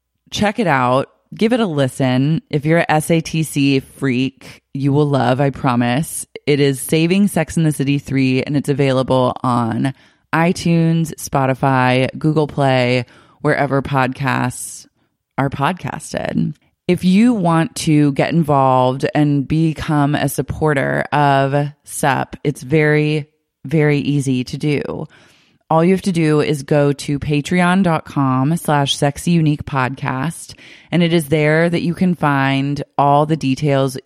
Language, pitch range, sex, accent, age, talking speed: English, 135-160 Hz, female, American, 20-39, 140 wpm